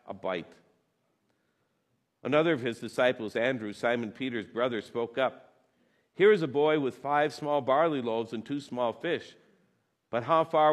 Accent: American